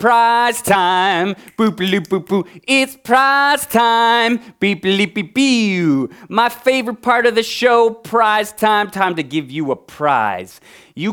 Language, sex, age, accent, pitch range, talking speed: English, male, 30-49, American, 160-230 Hz, 150 wpm